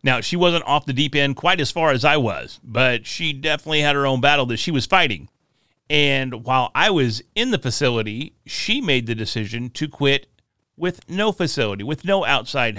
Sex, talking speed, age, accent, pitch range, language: male, 200 wpm, 40-59, American, 115-155 Hz, English